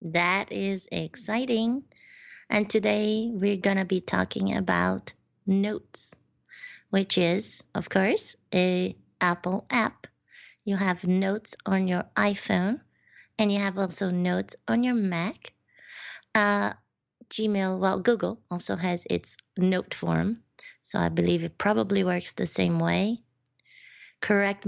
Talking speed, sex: 125 wpm, female